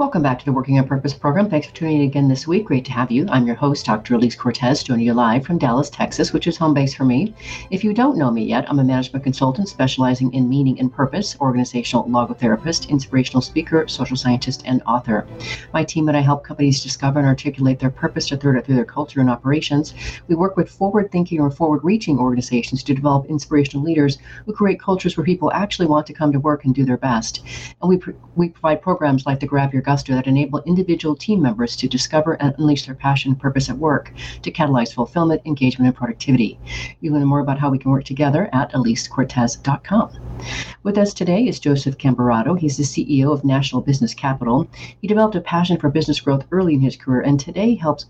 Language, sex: English, female